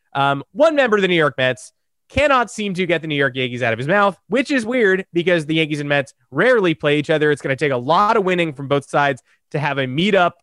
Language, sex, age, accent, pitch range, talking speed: English, male, 20-39, American, 140-200 Hz, 270 wpm